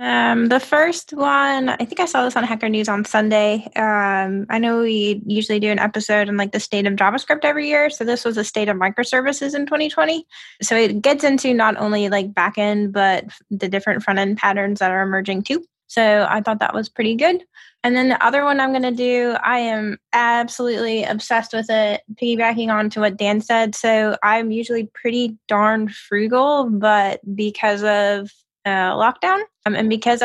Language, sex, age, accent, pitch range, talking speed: English, female, 10-29, American, 205-245 Hz, 195 wpm